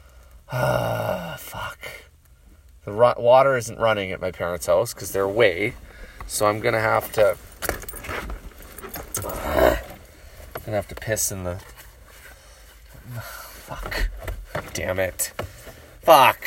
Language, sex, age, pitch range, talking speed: English, male, 30-49, 70-105 Hz, 130 wpm